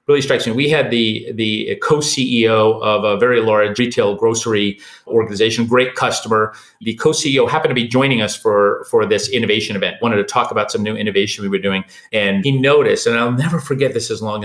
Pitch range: 115-165 Hz